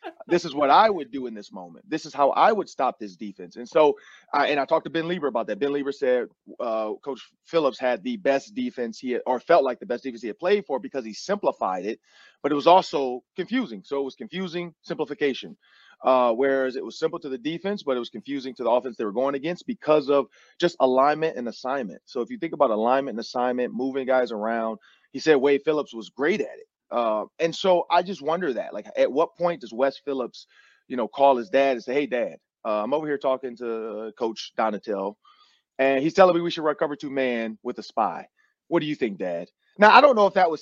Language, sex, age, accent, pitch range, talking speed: English, male, 30-49, American, 125-175 Hz, 240 wpm